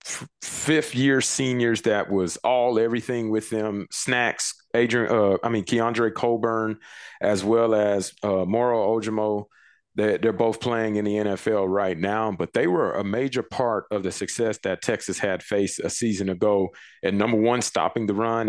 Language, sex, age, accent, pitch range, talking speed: English, male, 30-49, American, 100-115 Hz, 175 wpm